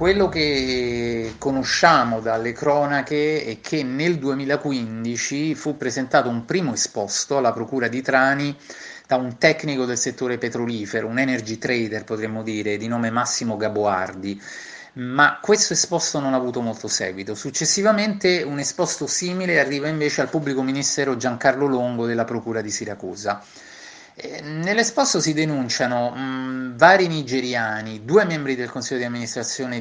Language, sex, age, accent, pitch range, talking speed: Italian, male, 30-49, native, 115-150 Hz, 135 wpm